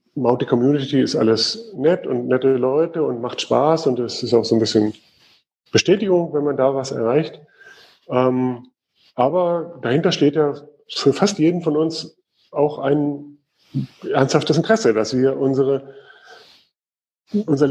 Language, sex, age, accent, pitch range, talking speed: German, male, 30-49, German, 120-150 Hz, 135 wpm